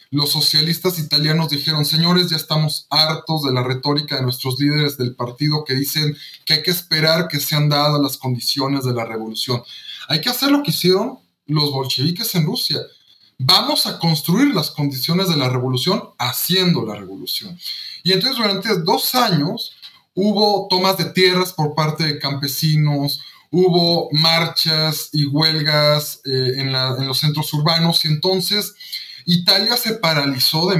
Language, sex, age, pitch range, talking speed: Spanish, male, 20-39, 140-180 Hz, 160 wpm